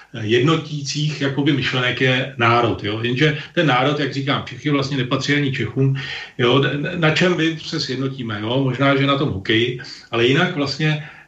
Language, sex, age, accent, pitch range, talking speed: Czech, male, 40-59, native, 120-150 Hz, 165 wpm